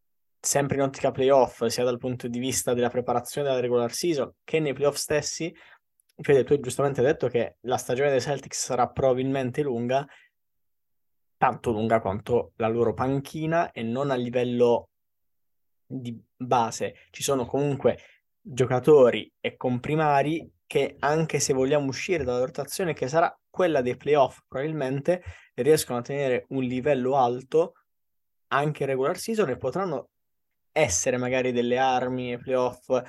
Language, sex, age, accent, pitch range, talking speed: Italian, male, 20-39, native, 120-140 Hz, 145 wpm